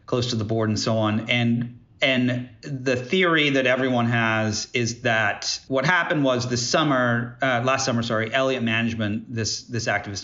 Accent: American